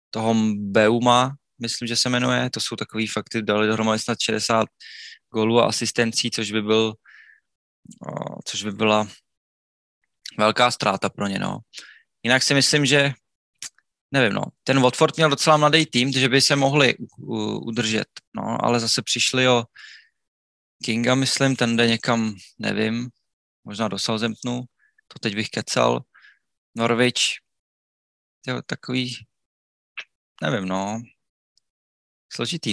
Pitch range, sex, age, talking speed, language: 110-125 Hz, male, 20-39, 130 wpm, Czech